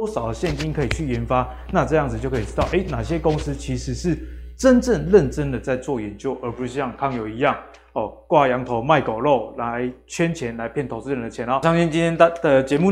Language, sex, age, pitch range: Chinese, male, 20-39, 130-175 Hz